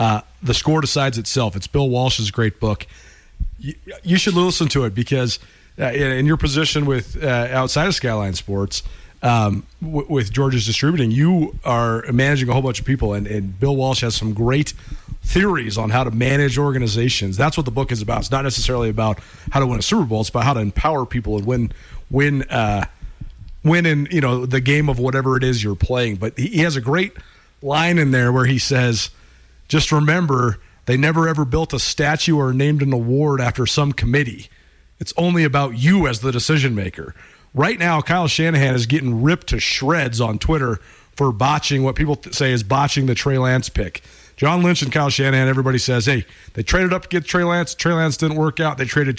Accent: American